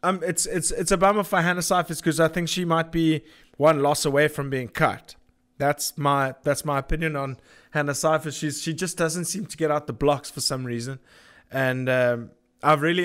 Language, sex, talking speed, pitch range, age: English, male, 210 wpm, 135-165 Hz, 20-39